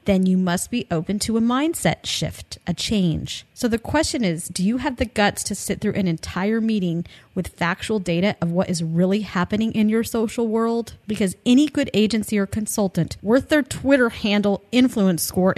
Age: 30-49